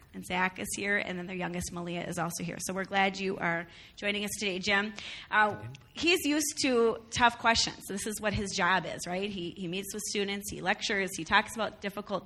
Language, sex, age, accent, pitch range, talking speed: English, female, 30-49, American, 180-210 Hz, 220 wpm